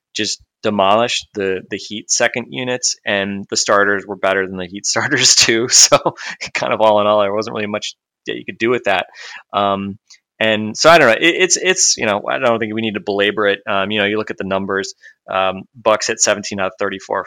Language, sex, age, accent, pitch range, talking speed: English, male, 20-39, American, 95-105 Hz, 235 wpm